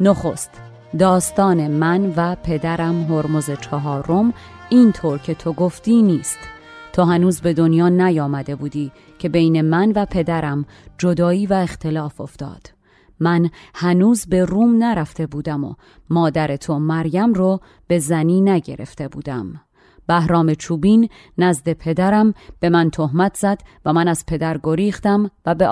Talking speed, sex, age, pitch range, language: 135 wpm, female, 30-49, 155-190 Hz, Persian